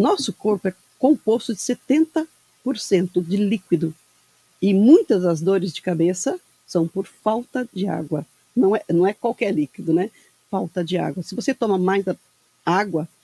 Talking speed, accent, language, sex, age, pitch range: 155 wpm, Brazilian, Portuguese, female, 50-69, 175-220 Hz